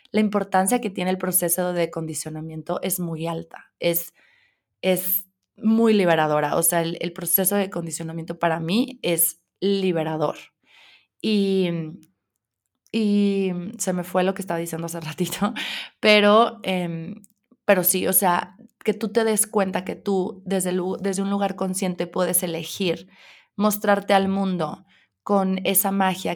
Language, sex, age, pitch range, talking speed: Spanish, female, 20-39, 170-205 Hz, 145 wpm